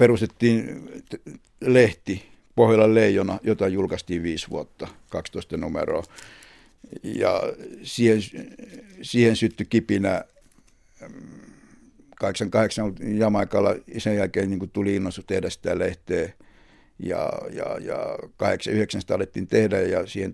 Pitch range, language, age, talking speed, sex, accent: 100-120 Hz, Finnish, 60-79, 105 wpm, male, native